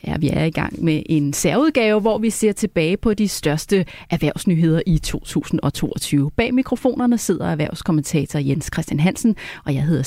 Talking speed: 165 wpm